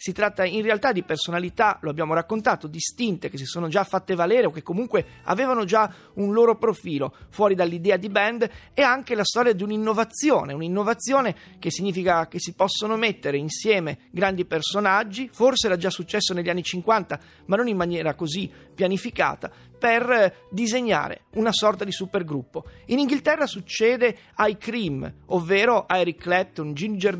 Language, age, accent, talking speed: Italian, 30-49, native, 160 wpm